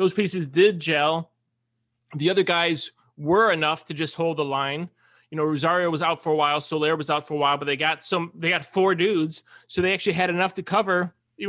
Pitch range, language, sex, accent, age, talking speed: 150-195 Hz, English, male, American, 30-49, 230 wpm